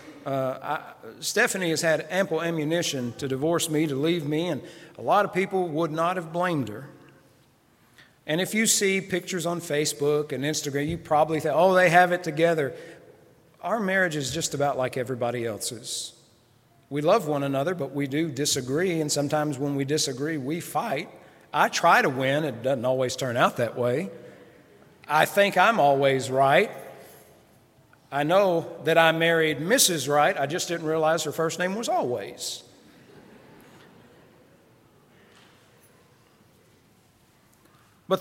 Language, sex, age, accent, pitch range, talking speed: English, male, 40-59, American, 145-185 Hz, 150 wpm